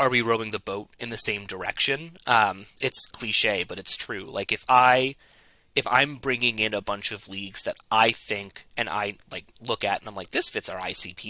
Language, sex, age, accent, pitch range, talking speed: English, male, 20-39, American, 110-135 Hz, 220 wpm